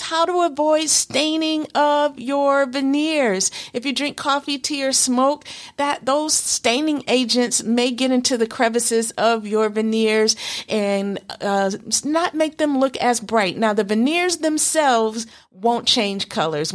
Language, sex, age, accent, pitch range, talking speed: English, female, 50-69, American, 225-290 Hz, 145 wpm